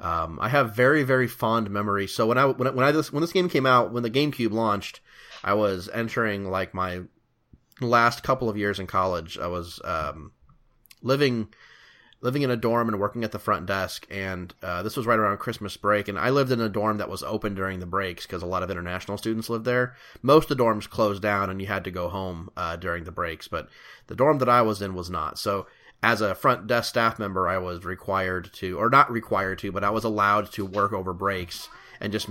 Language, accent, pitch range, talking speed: English, American, 95-115 Hz, 235 wpm